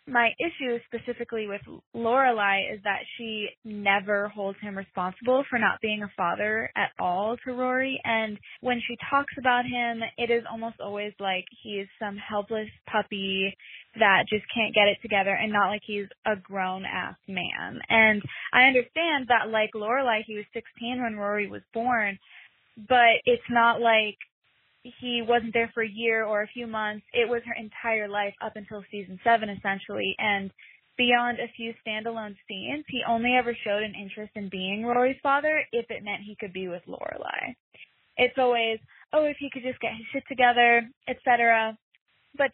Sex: female